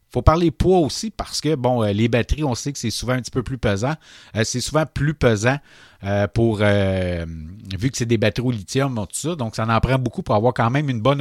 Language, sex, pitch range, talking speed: French, male, 110-135 Hz, 250 wpm